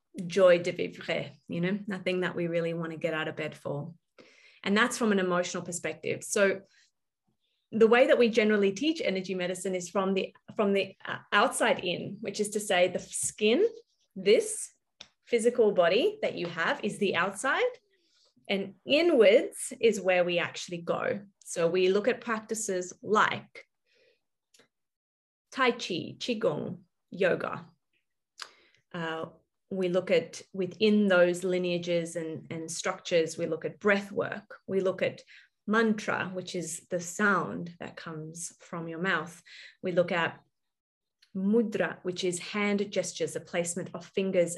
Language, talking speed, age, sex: English, 150 wpm, 30-49, female